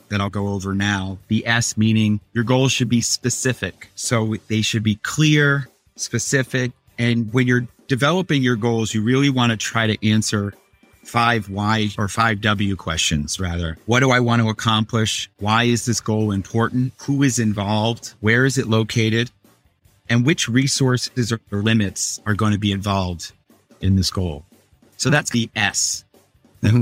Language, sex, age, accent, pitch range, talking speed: English, male, 30-49, American, 100-125 Hz, 170 wpm